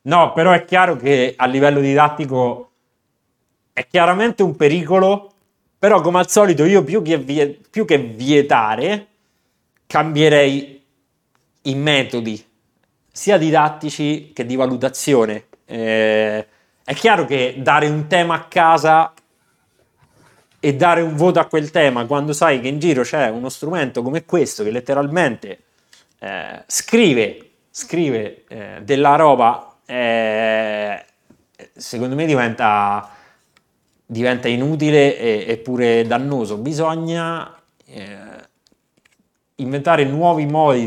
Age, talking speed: 30-49, 115 wpm